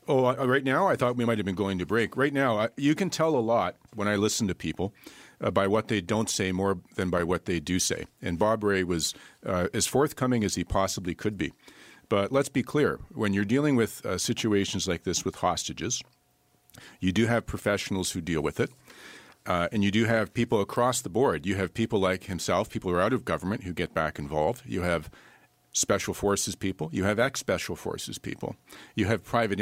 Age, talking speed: 50-69, 220 wpm